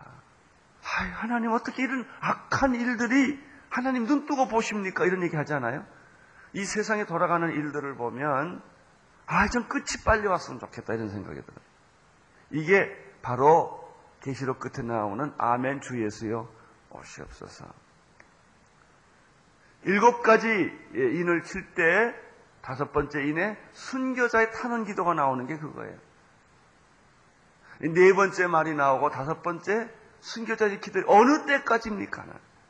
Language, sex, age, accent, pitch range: Korean, male, 40-59, native, 145-240 Hz